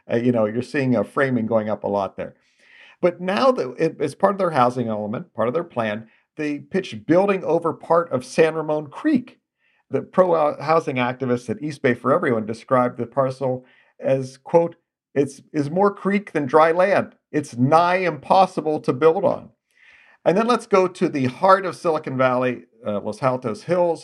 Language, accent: English, American